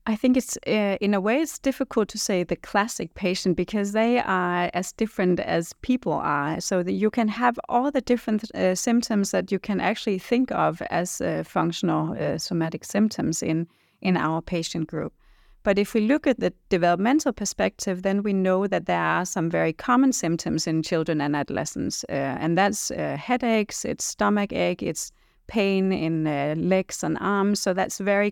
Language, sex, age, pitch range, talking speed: Danish, female, 30-49, 170-210 Hz, 190 wpm